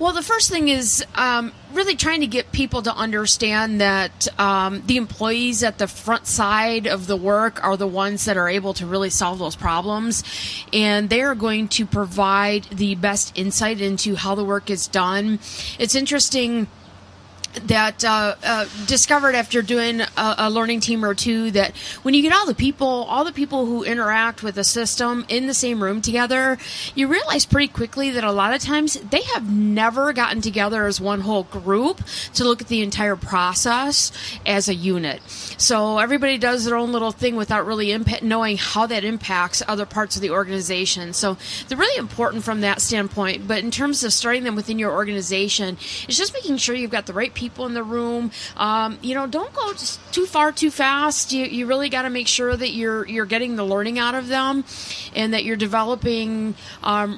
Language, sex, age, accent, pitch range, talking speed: English, female, 30-49, American, 205-250 Hz, 200 wpm